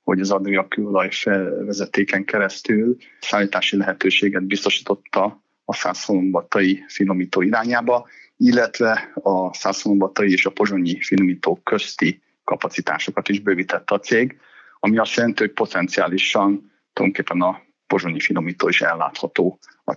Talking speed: 115 wpm